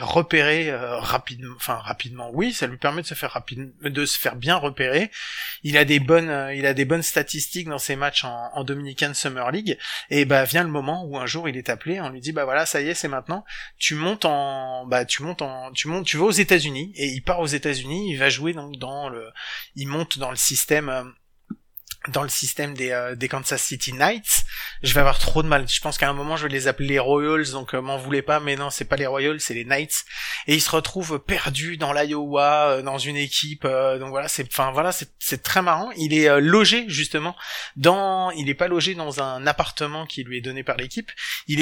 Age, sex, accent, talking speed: 30-49, male, French, 240 wpm